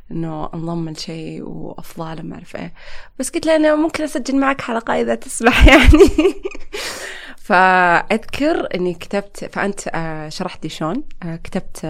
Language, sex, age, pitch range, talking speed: Arabic, female, 20-39, 165-220 Hz, 125 wpm